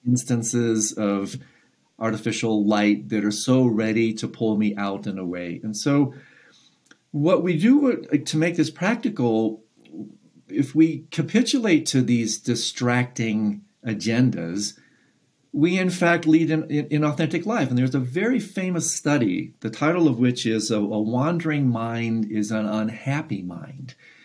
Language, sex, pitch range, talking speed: English, male, 105-150 Hz, 140 wpm